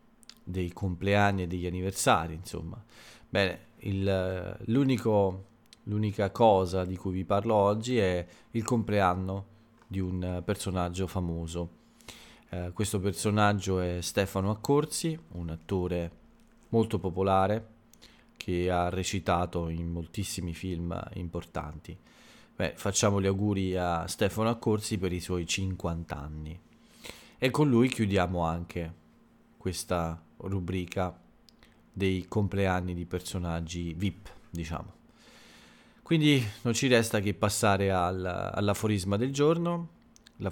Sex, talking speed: male, 110 wpm